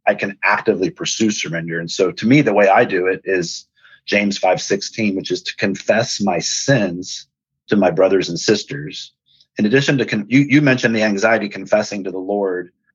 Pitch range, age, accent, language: 90-110 Hz, 30-49, American, English